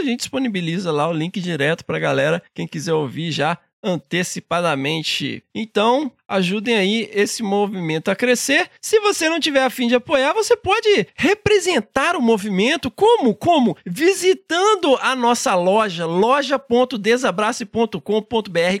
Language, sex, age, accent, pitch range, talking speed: Portuguese, male, 20-39, Brazilian, 185-235 Hz, 130 wpm